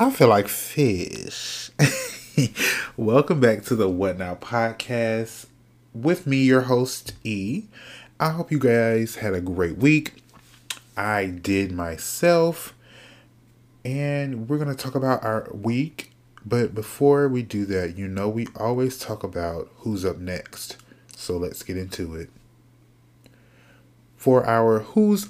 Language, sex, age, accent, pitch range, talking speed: English, male, 30-49, American, 105-130 Hz, 135 wpm